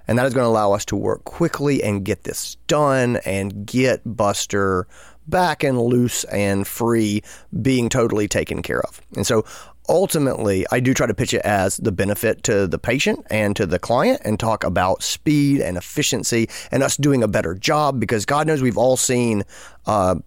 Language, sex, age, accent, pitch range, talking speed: English, male, 30-49, American, 100-130 Hz, 190 wpm